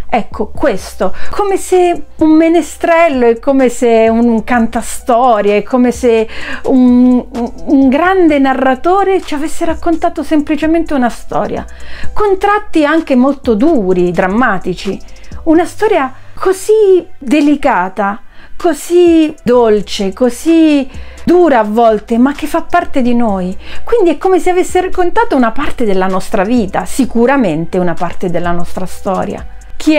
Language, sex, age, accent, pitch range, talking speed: Italian, female, 40-59, native, 195-310 Hz, 125 wpm